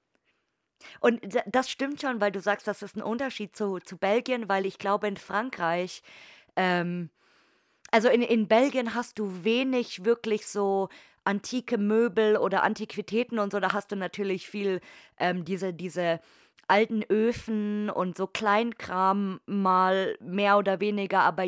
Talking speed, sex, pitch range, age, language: 150 wpm, female, 185-215 Hz, 20-39, German